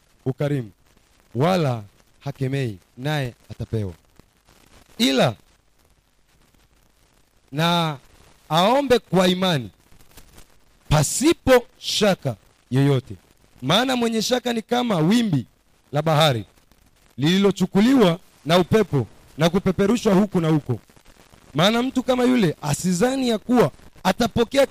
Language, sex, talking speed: Swahili, male, 90 wpm